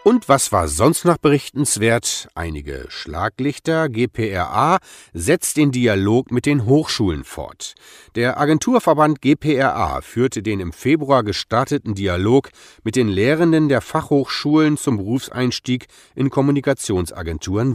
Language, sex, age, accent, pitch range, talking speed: German, male, 40-59, German, 105-145 Hz, 115 wpm